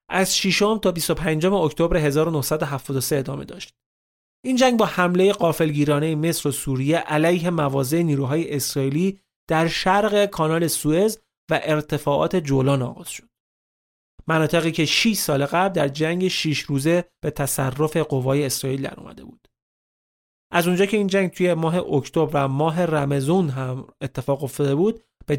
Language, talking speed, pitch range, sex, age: Persian, 145 wpm, 140-190 Hz, male, 30-49